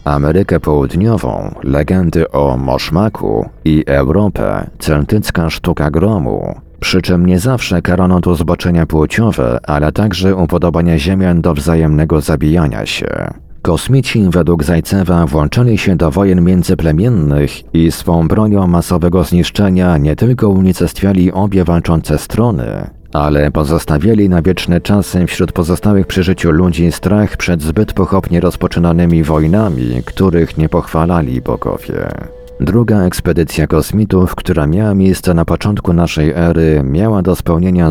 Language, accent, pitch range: Polish, native, 75-95 Hz